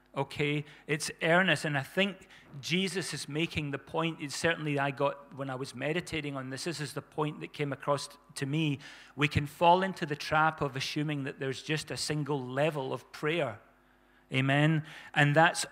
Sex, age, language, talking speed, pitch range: male, 40-59, English, 185 wpm, 140-160 Hz